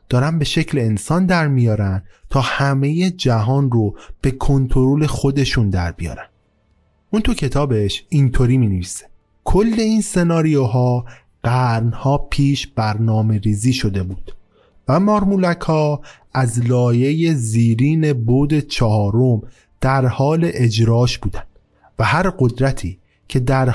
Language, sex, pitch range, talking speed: Persian, male, 115-145 Hz, 115 wpm